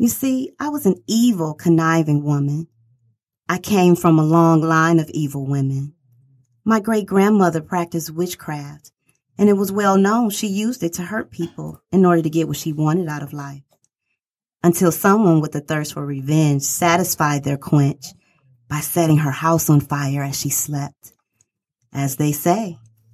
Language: English